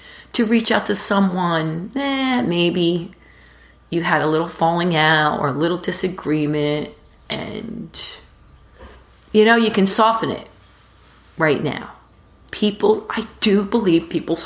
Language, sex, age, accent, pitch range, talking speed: English, female, 40-59, American, 155-205 Hz, 135 wpm